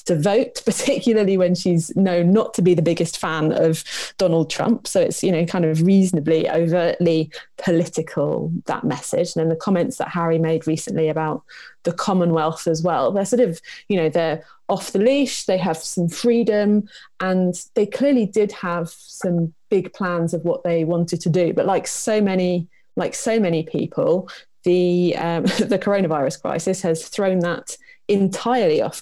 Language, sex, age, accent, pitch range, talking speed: English, female, 20-39, British, 170-225 Hz, 175 wpm